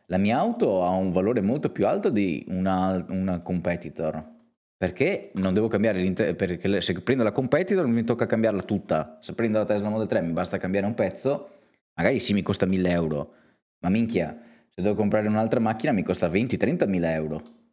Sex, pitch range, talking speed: male, 85-105 Hz, 185 wpm